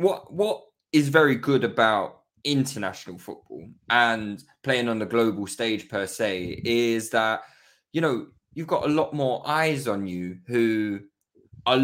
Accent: British